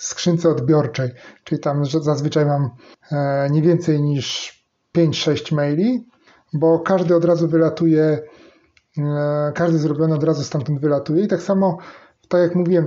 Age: 30-49